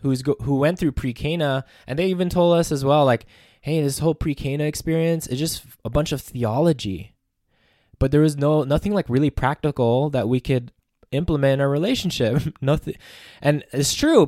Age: 20-39